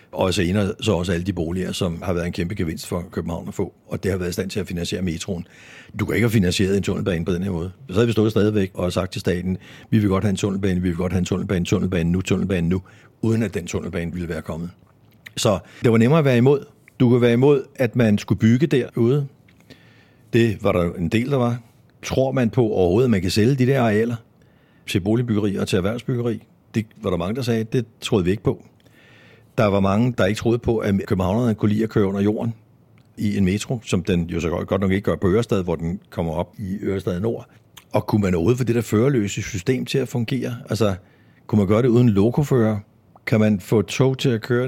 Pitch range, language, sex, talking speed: 95-125 Hz, Danish, male, 245 wpm